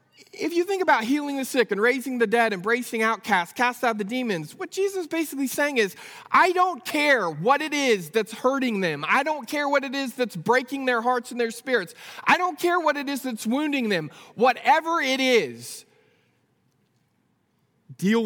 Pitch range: 225-275 Hz